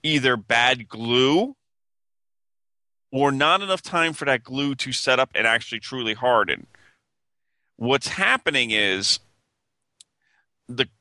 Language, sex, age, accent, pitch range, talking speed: English, male, 40-59, American, 115-145 Hz, 115 wpm